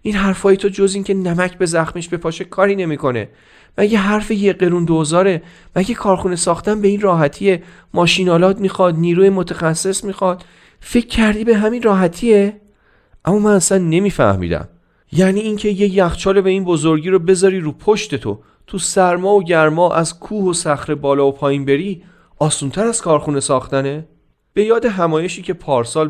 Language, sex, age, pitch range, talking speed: Persian, male, 40-59, 115-190 Hz, 165 wpm